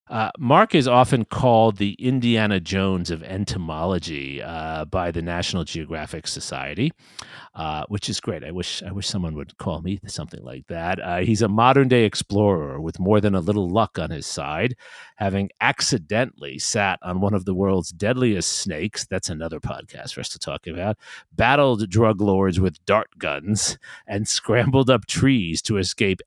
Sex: male